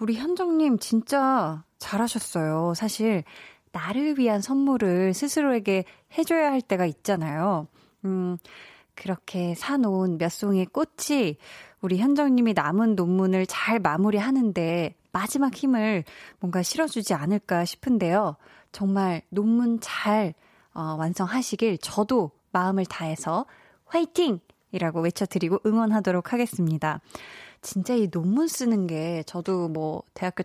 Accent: native